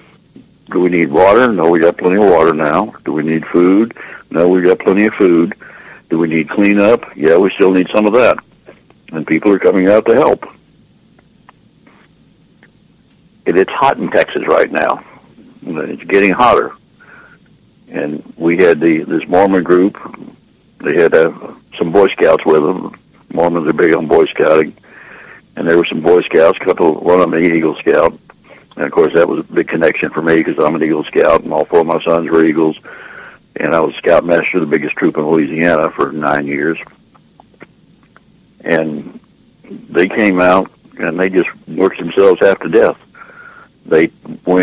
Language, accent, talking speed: English, American, 180 wpm